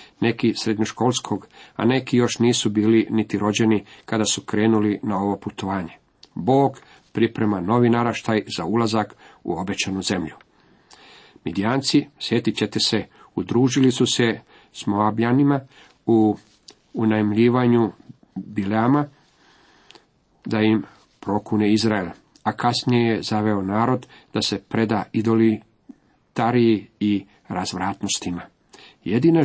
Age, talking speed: 50-69, 105 wpm